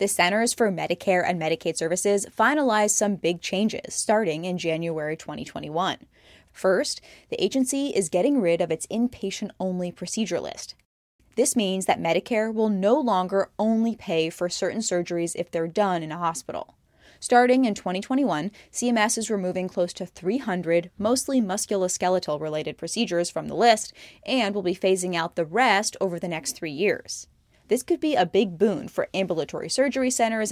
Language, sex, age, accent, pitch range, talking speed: English, female, 10-29, American, 175-225 Hz, 160 wpm